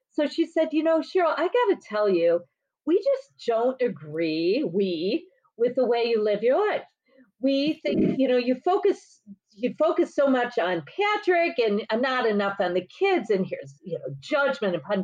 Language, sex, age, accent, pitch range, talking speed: English, female, 40-59, American, 215-330 Hz, 190 wpm